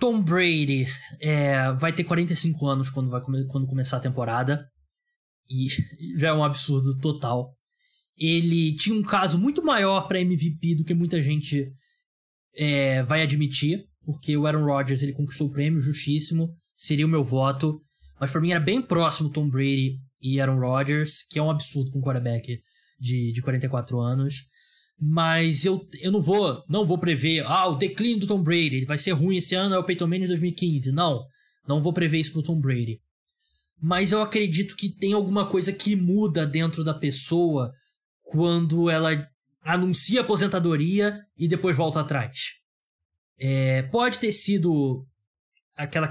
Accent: Brazilian